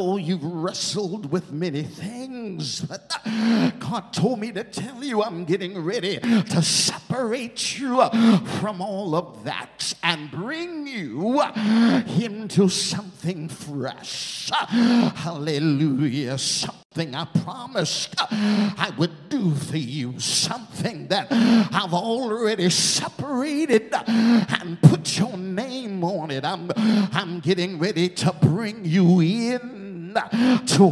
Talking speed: 110 wpm